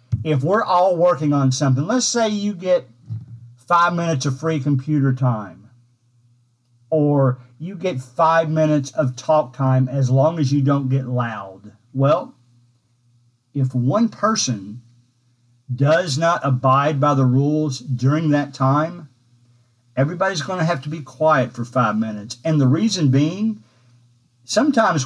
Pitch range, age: 125-175 Hz, 50-69